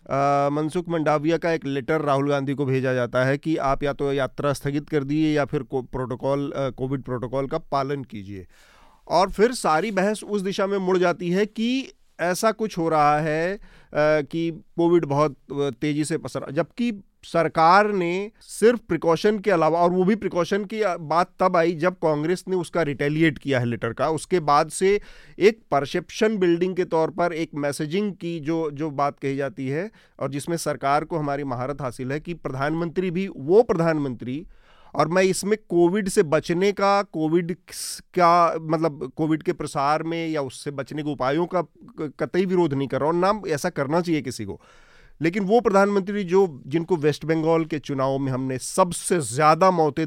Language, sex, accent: Hindi, male, native